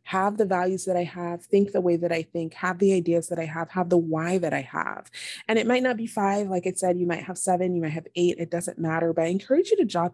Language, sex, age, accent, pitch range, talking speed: English, female, 20-39, American, 160-195 Hz, 295 wpm